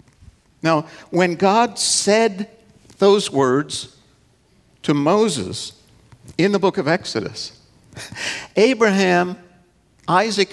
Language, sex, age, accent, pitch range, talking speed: English, male, 60-79, American, 145-210 Hz, 85 wpm